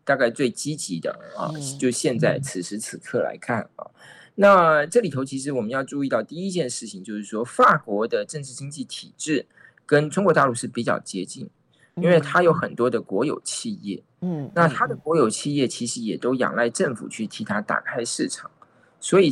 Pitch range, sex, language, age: 115-155 Hz, male, Chinese, 20-39